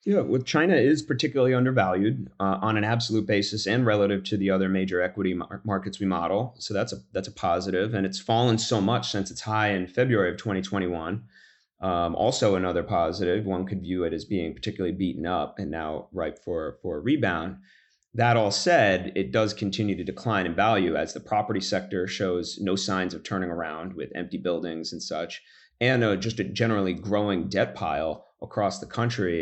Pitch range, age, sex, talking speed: 90-110 Hz, 30-49, male, 200 wpm